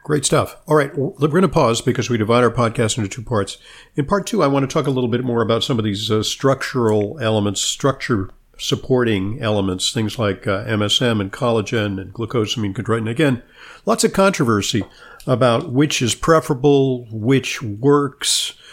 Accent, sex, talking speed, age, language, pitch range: American, male, 175 wpm, 50-69, English, 105-130 Hz